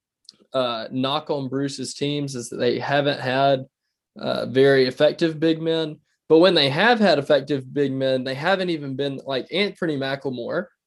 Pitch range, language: 130-155 Hz, English